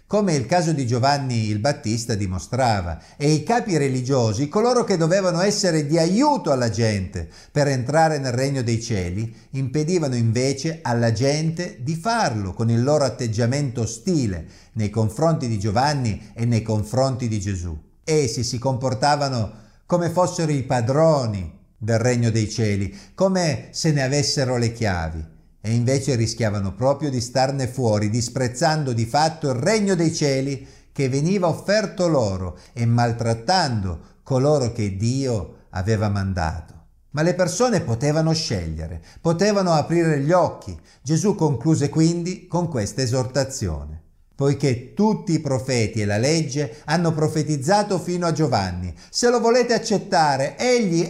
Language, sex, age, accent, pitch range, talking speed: Italian, male, 50-69, native, 110-160 Hz, 140 wpm